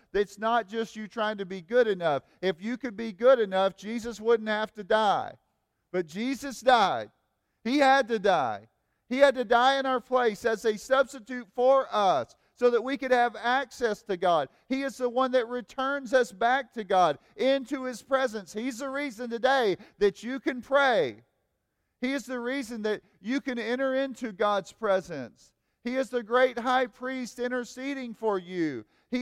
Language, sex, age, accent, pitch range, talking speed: English, male, 40-59, American, 215-260 Hz, 185 wpm